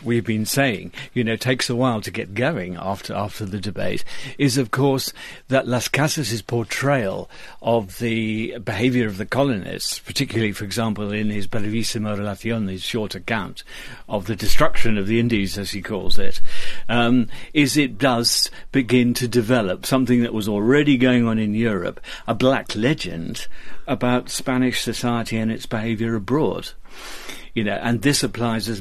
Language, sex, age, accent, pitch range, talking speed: English, male, 50-69, British, 105-125 Hz, 165 wpm